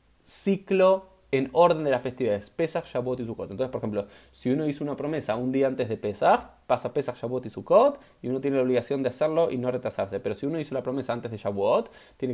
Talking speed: 235 wpm